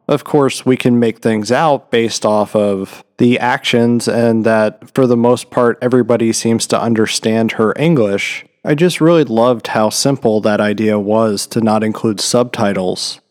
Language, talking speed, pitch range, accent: English, 165 wpm, 110-130 Hz, American